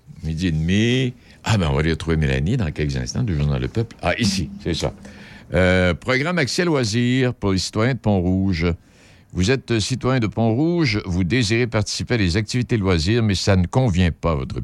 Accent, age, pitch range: French, 60-79, 75-110 Hz